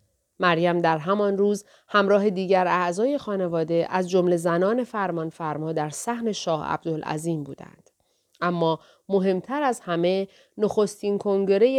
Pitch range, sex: 170-210 Hz, female